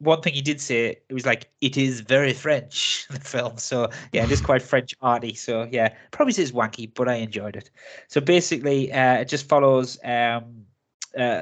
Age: 20-39